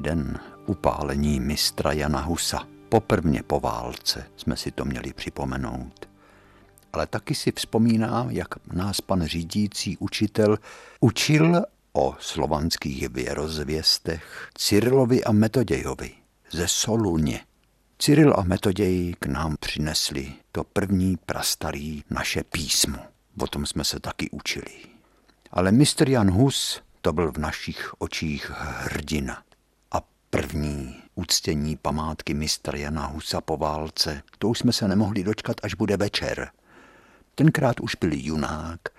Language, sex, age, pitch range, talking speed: Czech, male, 60-79, 75-110 Hz, 120 wpm